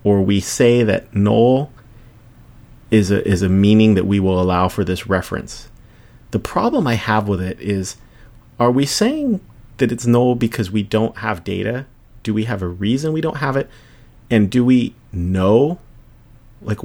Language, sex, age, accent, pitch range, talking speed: English, male, 30-49, American, 100-120 Hz, 175 wpm